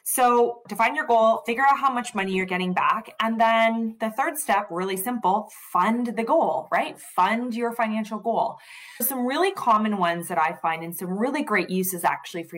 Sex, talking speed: female, 195 wpm